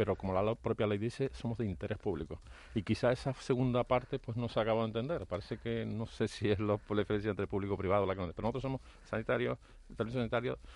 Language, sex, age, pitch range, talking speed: Spanish, male, 40-59, 100-130 Hz, 230 wpm